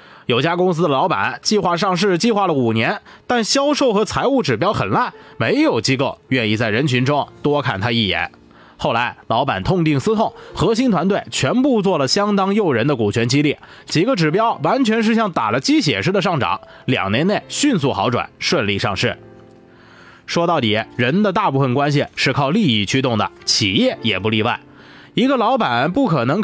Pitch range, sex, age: 120-205 Hz, male, 20-39